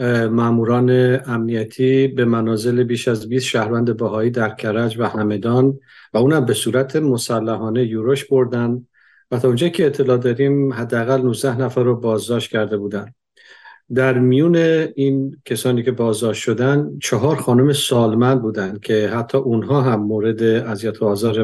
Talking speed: 150 wpm